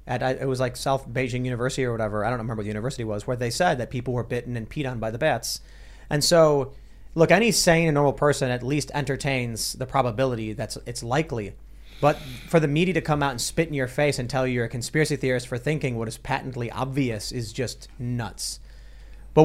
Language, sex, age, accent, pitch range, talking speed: English, male, 30-49, American, 125-160 Hz, 230 wpm